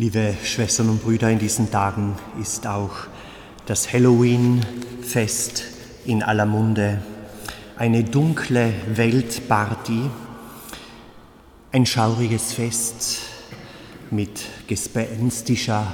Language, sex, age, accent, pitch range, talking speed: German, male, 30-49, German, 105-125 Hz, 85 wpm